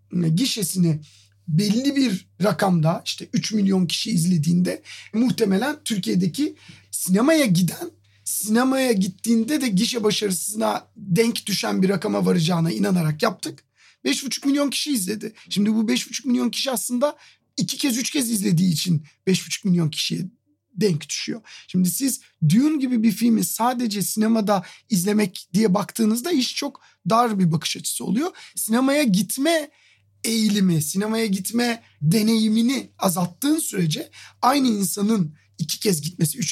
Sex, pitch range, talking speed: male, 175-235 Hz, 130 wpm